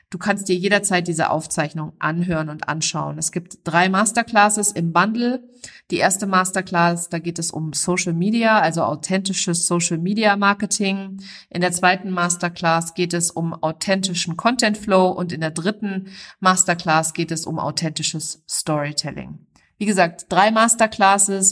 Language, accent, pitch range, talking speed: German, German, 165-200 Hz, 150 wpm